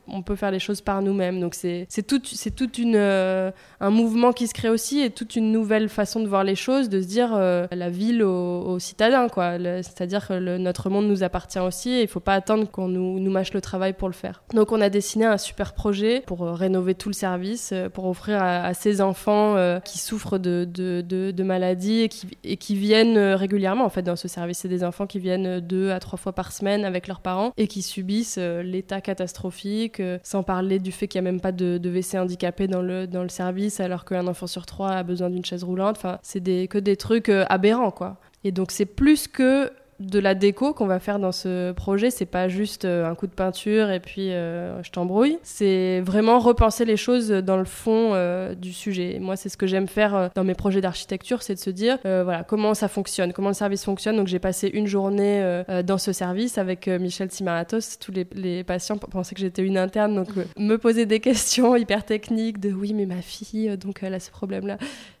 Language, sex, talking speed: French, female, 235 wpm